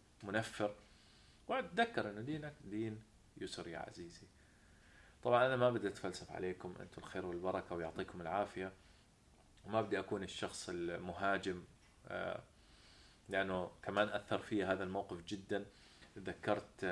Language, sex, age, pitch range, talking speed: Arabic, male, 20-39, 90-110 Hz, 115 wpm